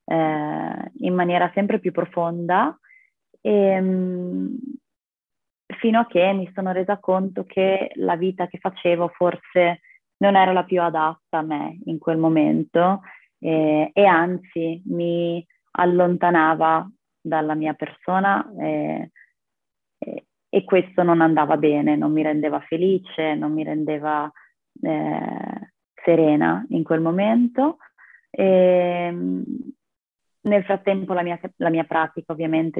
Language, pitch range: Italian, 155-185 Hz